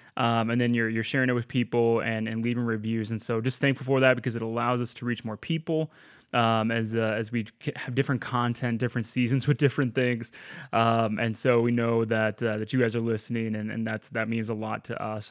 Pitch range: 115-140 Hz